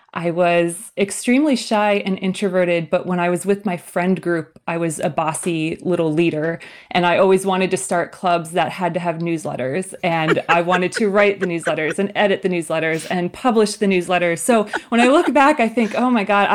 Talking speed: 205 wpm